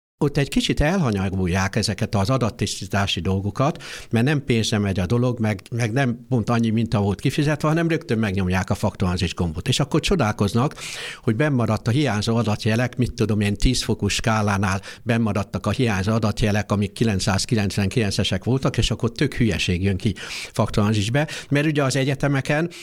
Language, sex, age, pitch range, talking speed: Hungarian, male, 60-79, 105-145 Hz, 160 wpm